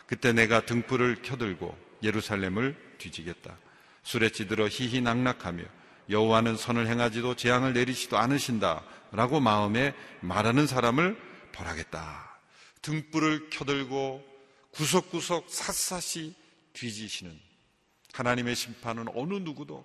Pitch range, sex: 110-135 Hz, male